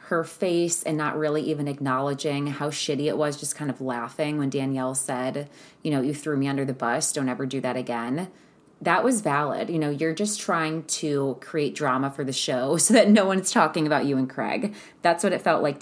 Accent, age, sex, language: American, 20-39, female, English